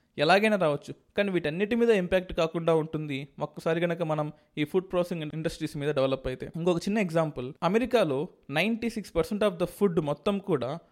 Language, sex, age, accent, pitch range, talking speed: Telugu, male, 20-39, native, 155-200 Hz, 165 wpm